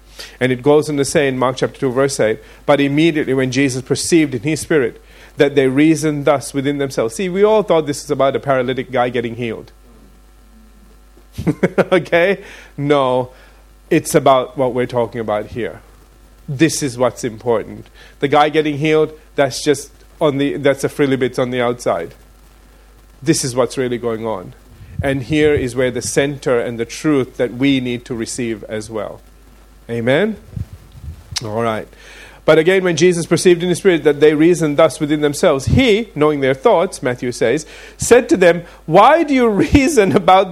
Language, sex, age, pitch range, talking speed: English, male, 40-59, 130-180 Hz, 175 wpm